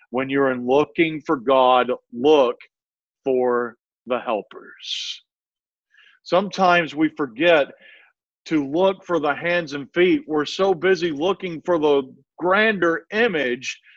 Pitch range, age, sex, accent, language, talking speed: 130-165 Hz, 50-69, male, American, English, 120 wpm